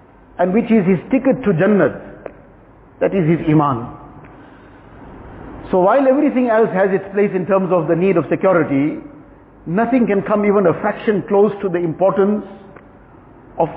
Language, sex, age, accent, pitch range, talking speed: English, male, 50-69, Indian, 165-205 Hz, 155 wpm